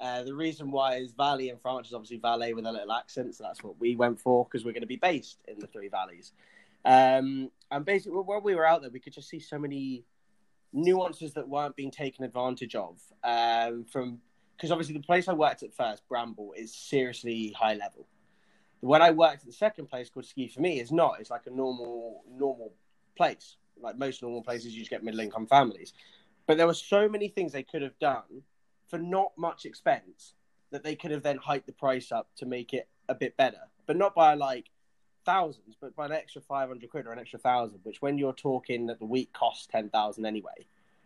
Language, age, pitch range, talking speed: English, 20-39, 120-150 Hz, 215 wpm